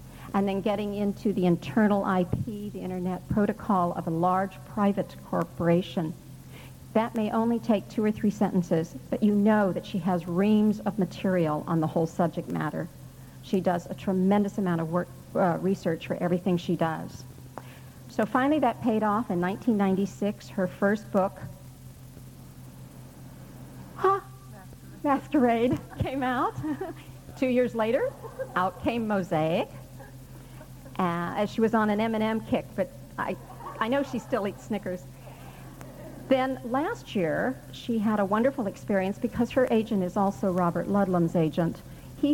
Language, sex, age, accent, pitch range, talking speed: English, female, 50-69, American, 165-215 Hz, 150 wpm